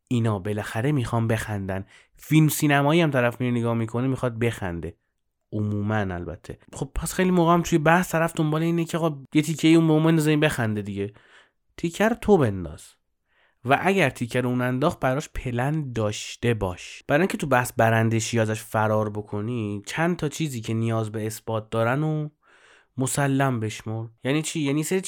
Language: Persian